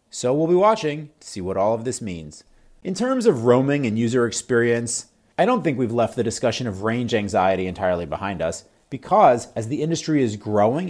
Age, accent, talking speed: 30-49, American, 205 wpm